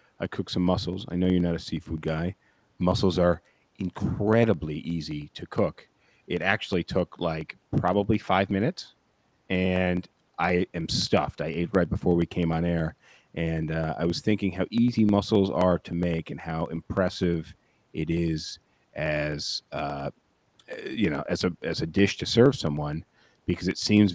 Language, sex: English, male